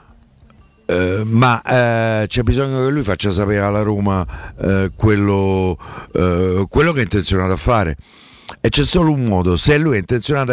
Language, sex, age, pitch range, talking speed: Italian, male, 50-69, 100-130 Hz, 165 wpm